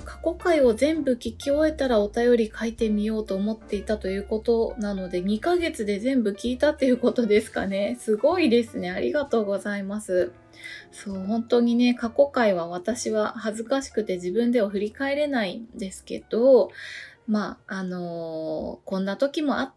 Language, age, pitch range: Japanese, 20-39, 195-255 Hz